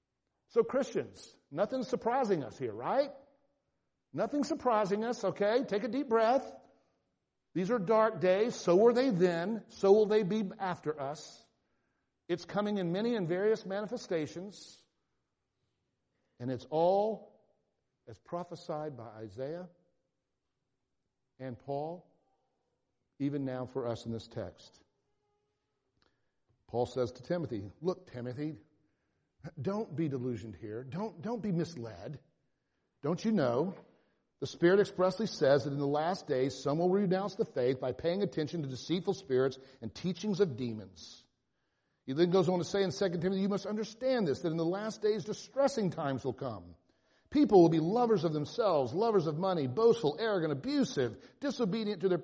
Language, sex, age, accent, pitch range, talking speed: English, male, 60-79, American, 130-210 Hz, 150 wpm